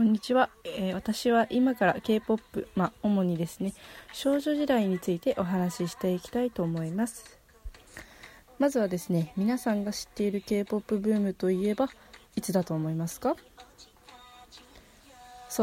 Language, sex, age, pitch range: Japanese, female, 20-39, 185-245 Hz